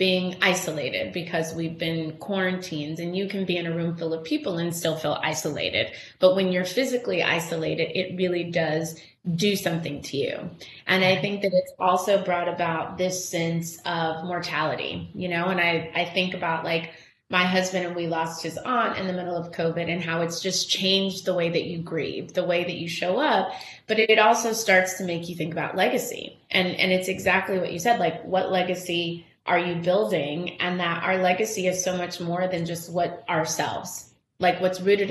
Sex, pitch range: female, 170-195 Hz